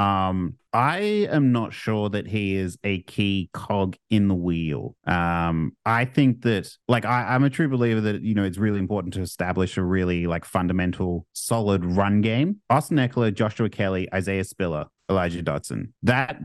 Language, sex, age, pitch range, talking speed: English, male, 30-49, 95-115 Hz, 175 wpm